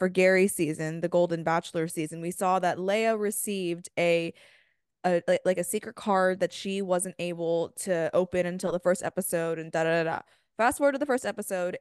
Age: 20-39